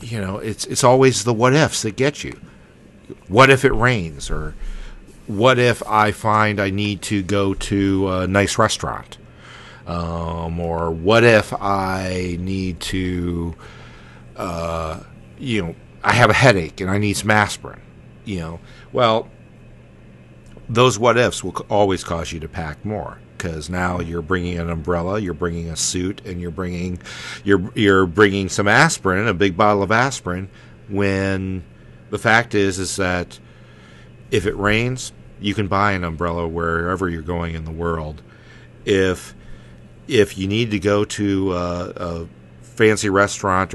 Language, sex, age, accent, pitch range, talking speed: English, male, 50-69, American, 85-105 Hz, 155 wpm